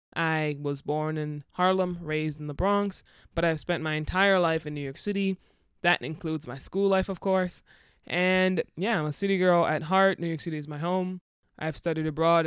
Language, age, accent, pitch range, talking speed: English, 20-39, American, 155-175 Hz, 205 wpm